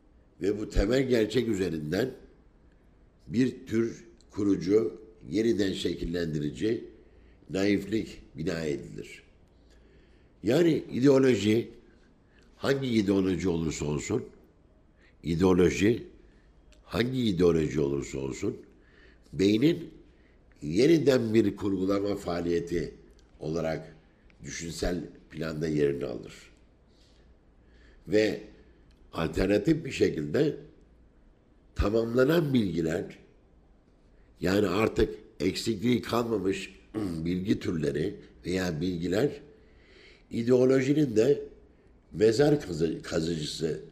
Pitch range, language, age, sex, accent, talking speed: 80-115 Hz, Turkish, 60-79, male, native, 70 wpm